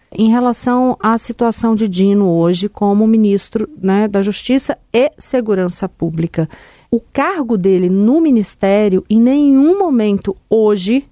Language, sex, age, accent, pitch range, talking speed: Portuguese, female, 40-59, Brazilian, 190-230 Hz, 130 wpm